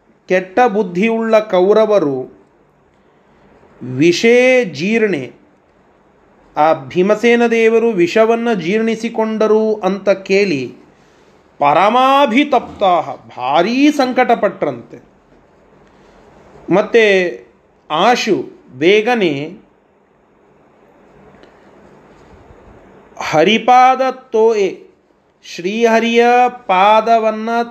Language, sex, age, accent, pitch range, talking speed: Kannada, male, 30-49, native, 185-235 Hz, 45 wpm